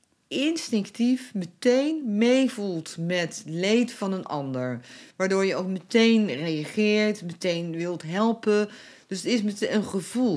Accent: Dutch